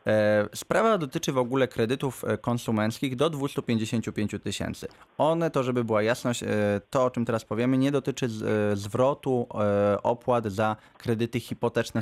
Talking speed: 135 wpm